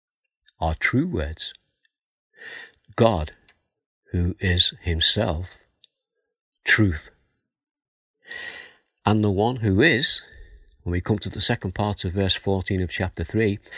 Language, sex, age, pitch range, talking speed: English, male, 50-69, 85-110 Hz, 115 wpm